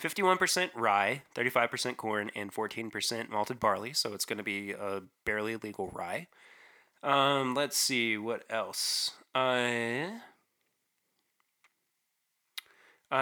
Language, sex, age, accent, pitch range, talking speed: English, male, 20-39, American, 105-130 Hz, 100 wpm